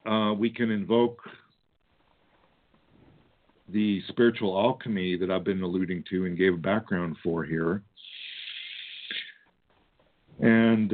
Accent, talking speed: American, 105 wpm